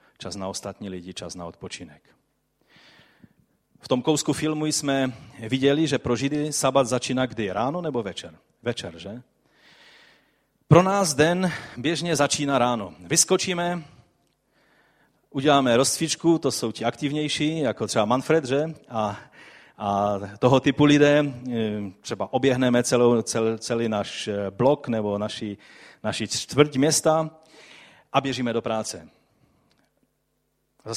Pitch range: 110-150 Hz